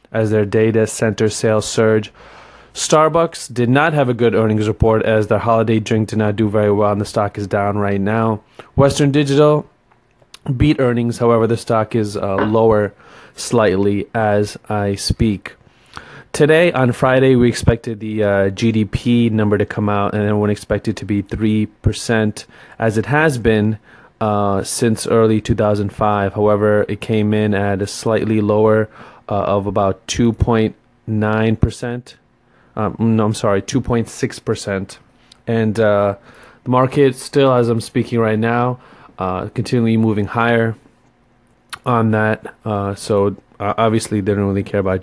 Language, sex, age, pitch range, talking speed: English, male, 20-39, 105-120 Hz, 150 wpm